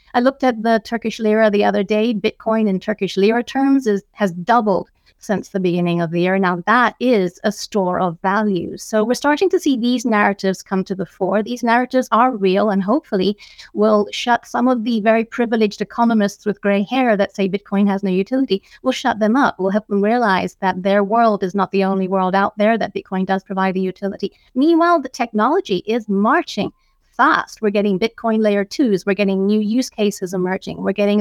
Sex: female